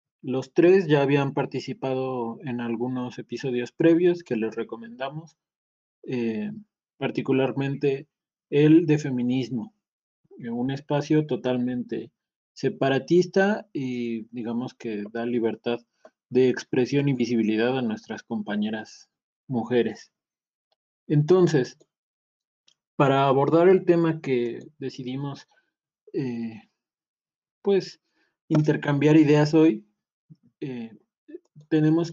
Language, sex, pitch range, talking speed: Spanish, male, 125-160 Hz, 90 wpm